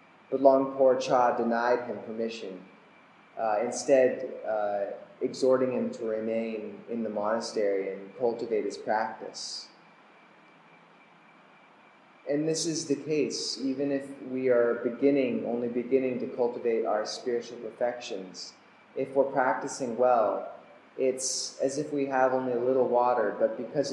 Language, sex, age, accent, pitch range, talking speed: English, male, 20-39, American, 120-140 Hz, 130 wpm